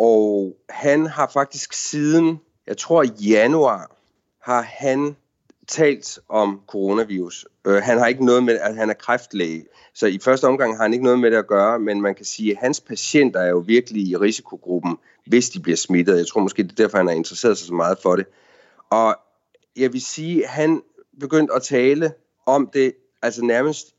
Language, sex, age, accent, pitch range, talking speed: Danish, male, 30-49, native, 115-155 Hz, 195 wpm